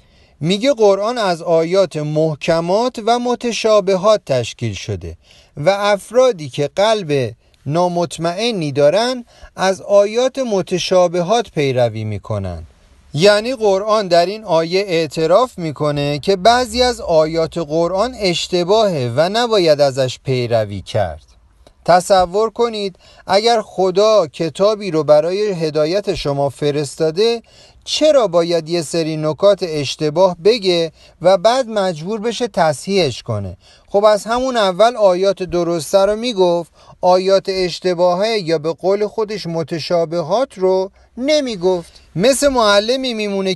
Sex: male